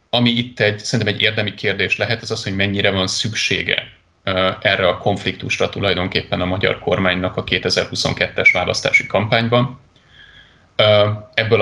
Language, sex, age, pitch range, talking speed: Hungarian, male, 30-49, 95-110 Hz, 135 wpm